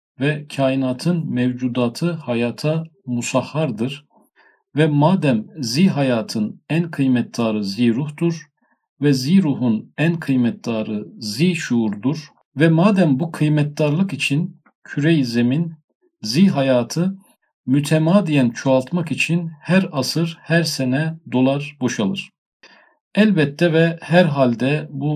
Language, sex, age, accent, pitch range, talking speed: Turkish, male, 50-69, native, 125-165 Hz, 105 wpm